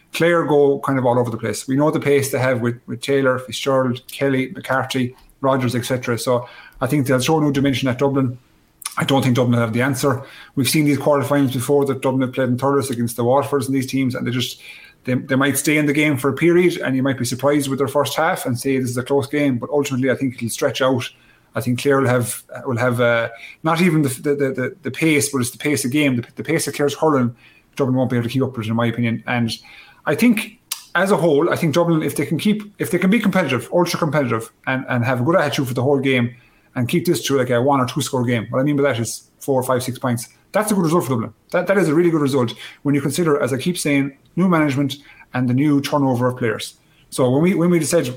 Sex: male